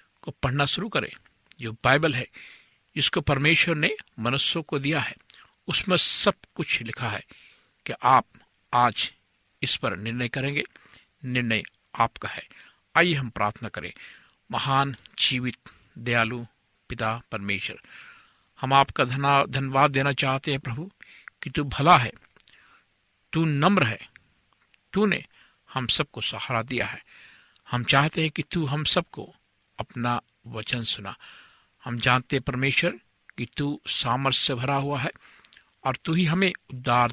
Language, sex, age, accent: Hindi, male, 60-79, native